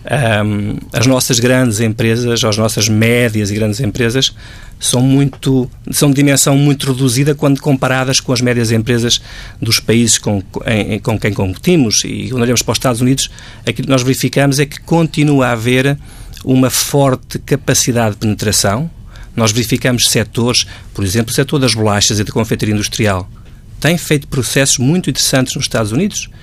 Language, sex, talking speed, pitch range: Portuguese, male, 165 wpm, 115-150 Hz